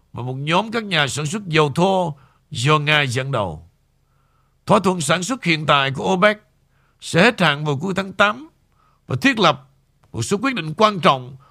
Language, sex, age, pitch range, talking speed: Vietnamese, male, 60-79, 135-170 Hz, 195 wpm